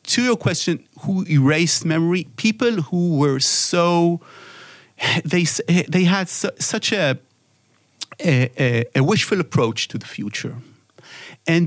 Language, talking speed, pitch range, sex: English, 125 wpm, 130-175 Hz, male